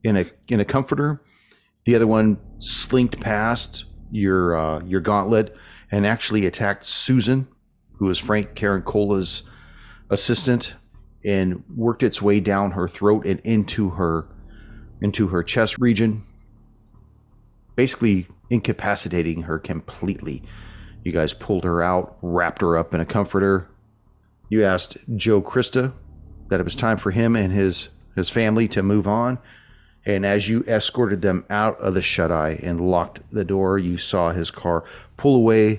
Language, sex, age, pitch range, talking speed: English, male, 40-59, 85-110 Hz, 150 wpm